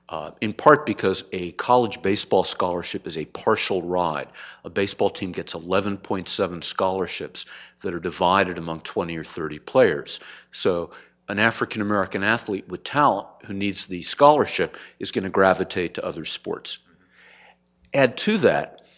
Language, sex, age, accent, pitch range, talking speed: English, male, 50-69, American, 85-110 Hz, 145 wpm